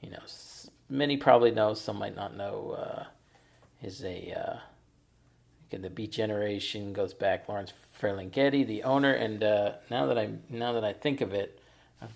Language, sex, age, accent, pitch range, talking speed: English, male, 40-59, American, 100-120 Hz, 170 wpm